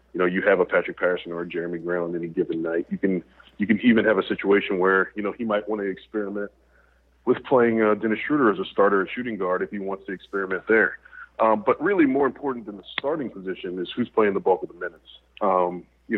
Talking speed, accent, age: 250 wpm, American, 30-49